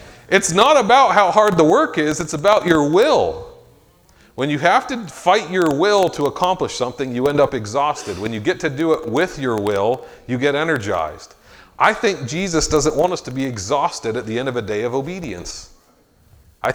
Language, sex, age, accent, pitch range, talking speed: English, male, 40-59, American, 120-165 Hz, 200 wpm